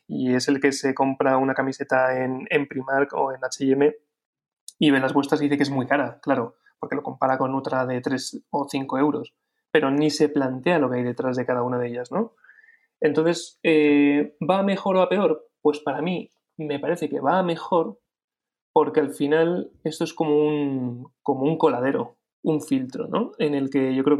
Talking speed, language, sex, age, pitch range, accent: 205 wpm, Spanish, male, 30-49, 140-160 Hz, Spanish